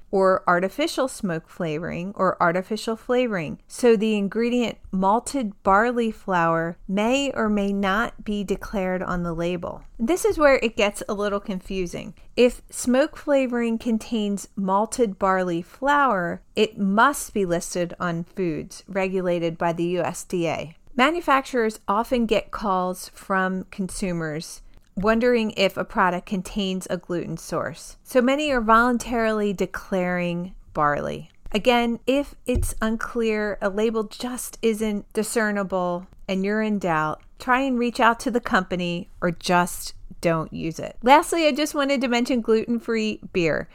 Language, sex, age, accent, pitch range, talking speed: English, female, 40-59, American, 185-235 Hz, 140 wpm